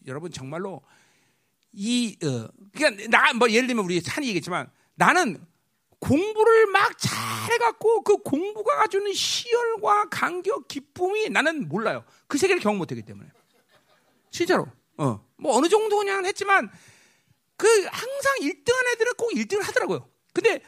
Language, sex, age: Korean, male, 40-59